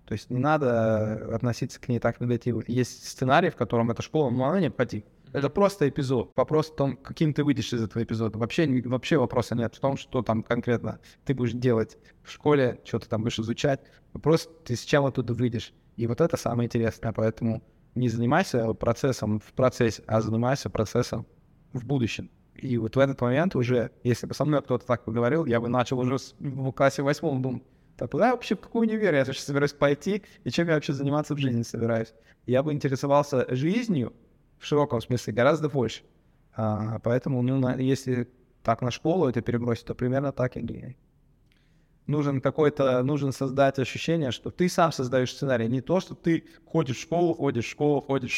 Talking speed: 190 wpm